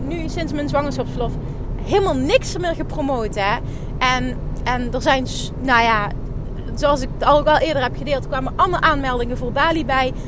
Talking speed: 165 wpm